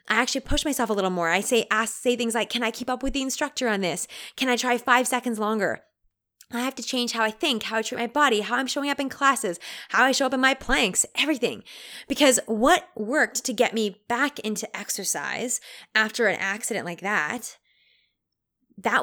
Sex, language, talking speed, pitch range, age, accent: female, English, 220 wpm, 210-270 Hz, 20-39, American